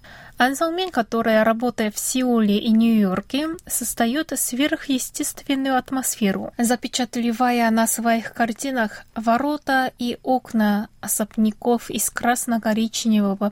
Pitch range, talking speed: 215-260 Hz, 90 wpm